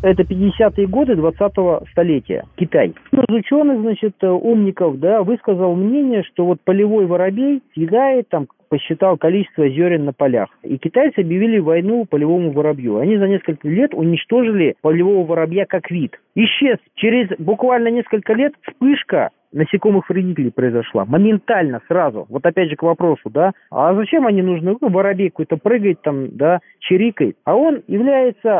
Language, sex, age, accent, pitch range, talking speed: Russian, male, 40-59, native, 165-220 Hz, 145 wpm